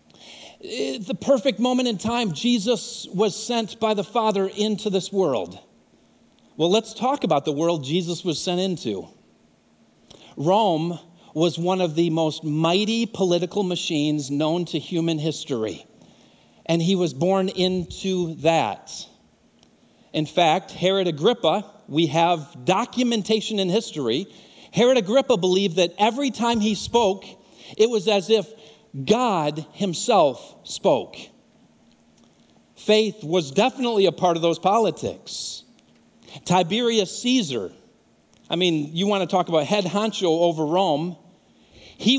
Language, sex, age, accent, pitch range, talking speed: English, male, 40-59, American, 165-220 Hz, 125 wpm